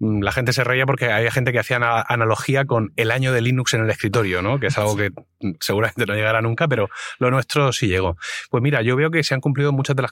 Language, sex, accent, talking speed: Spanish, male, Spanish, 255 wpm